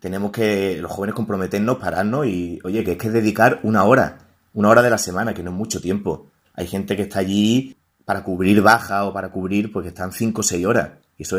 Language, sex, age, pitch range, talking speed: Spanish, male, 30-49, 95-105 Hz, 225 wpm